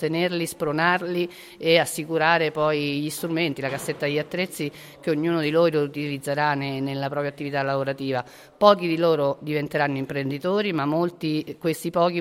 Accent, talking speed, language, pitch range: native, 145 wpm, Italian, 140-160 Hz